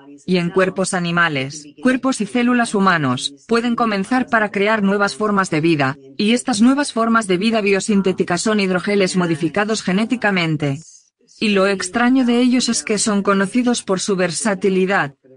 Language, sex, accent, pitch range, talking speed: Spanish, female, Spanish, 165-225 Hz, 150 wpm